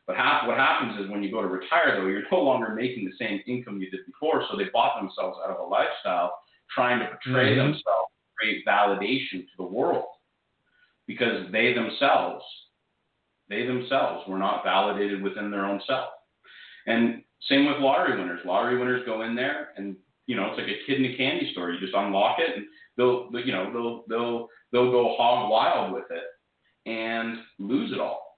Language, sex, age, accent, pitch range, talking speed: English, male, 40-59, American, 105-135 Hz, 190 wpm